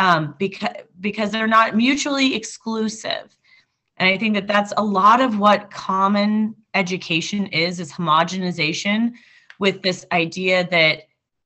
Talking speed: 130 wpm